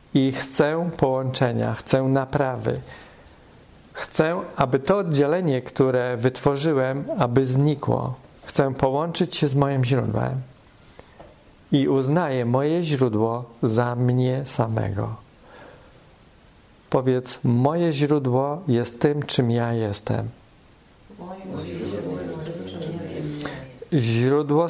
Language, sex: English, male